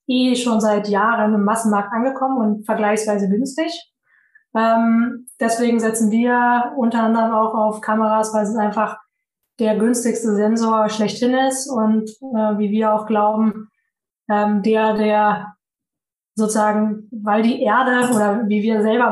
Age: 20-39